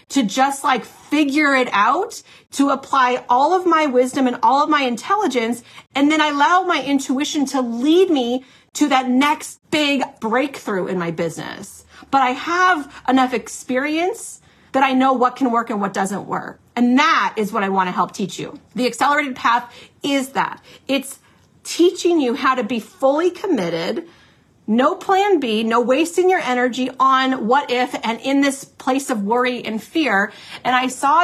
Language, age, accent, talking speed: English, 40-59, American, 180 wpm